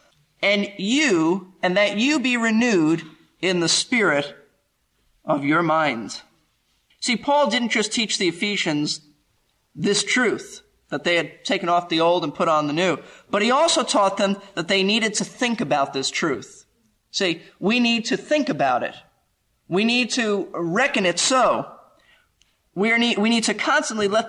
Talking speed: 160 wpm